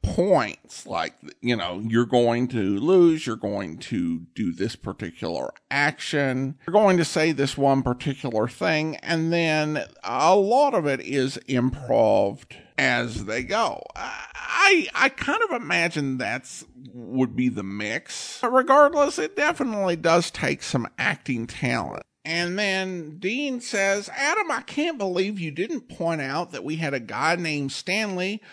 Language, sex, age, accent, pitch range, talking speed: English, male, 50-69, American, 135-195 Hz, 150 wpm